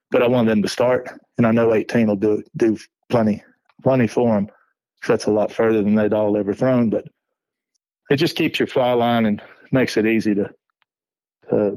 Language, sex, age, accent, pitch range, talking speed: English, male, 30-49, American, 105-115 Hz, 210 wpm